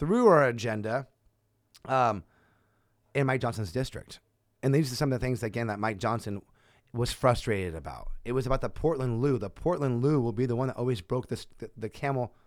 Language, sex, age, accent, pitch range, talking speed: English, male, 30-49, American, 110-155 Hz, 195 wpm